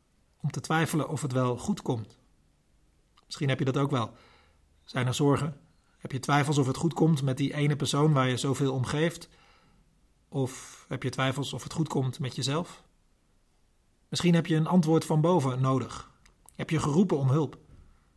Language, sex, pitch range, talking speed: Dutch, male, 130-165 Hz, 185 wpm